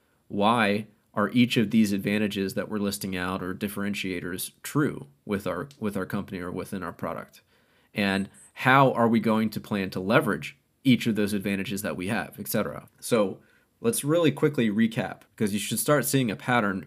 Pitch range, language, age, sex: 100-120 Hz, English, 30-49, male